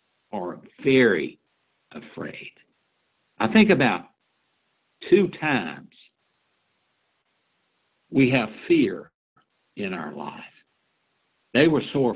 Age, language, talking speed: 60-79, English, 85 wpm